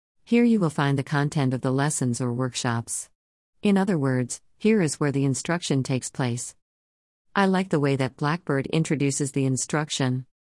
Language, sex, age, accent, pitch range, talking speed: English, female, 50-69, American, 130-160 Hz, 170 wpm